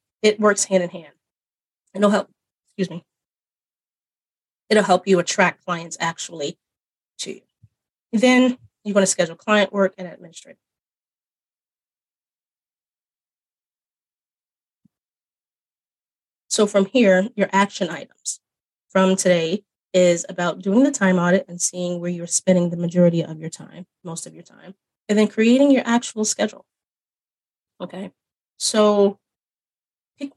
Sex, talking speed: female, 125 wpm